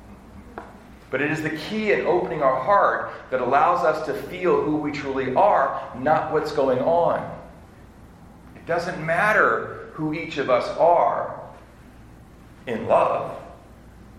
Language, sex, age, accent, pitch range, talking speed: English, male, 50-69, American, 115-160 Hz, 135 wpm